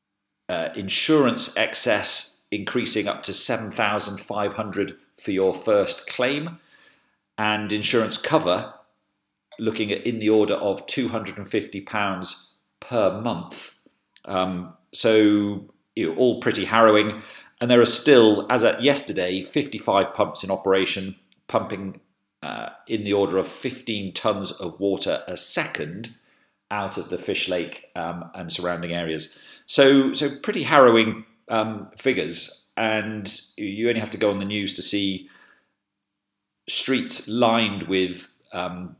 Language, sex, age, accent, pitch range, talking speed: English, male, 40-59, British, 95-110 Hz, 130 wpm